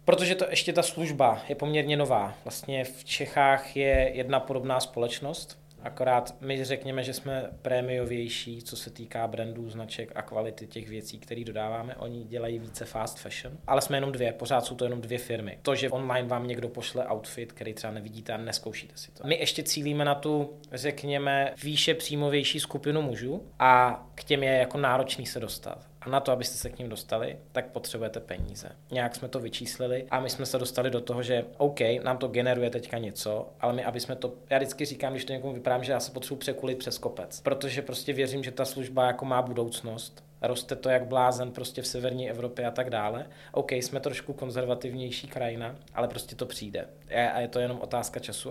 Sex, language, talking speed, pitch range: male, Czech, 200 wpm, 120-135 Hz